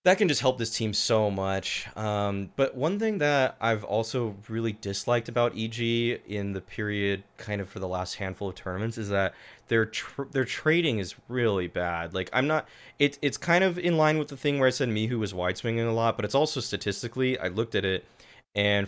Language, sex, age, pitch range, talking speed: English, male, 20-39, 100-130 Hz, 215 wpm